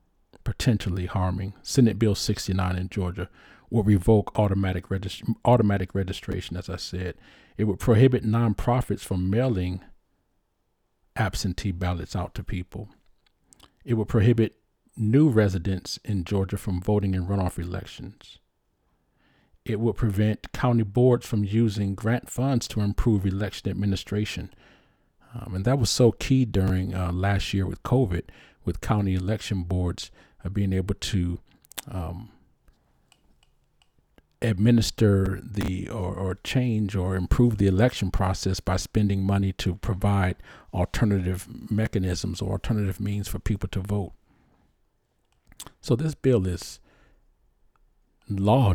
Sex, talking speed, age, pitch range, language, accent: male, 125 wpm, 40-59, 90-110 Hz, English, American